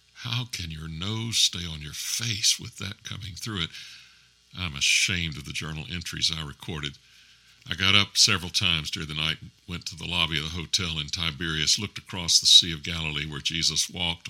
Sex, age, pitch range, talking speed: male, 60-79, 70-90 Hz, 195 wpm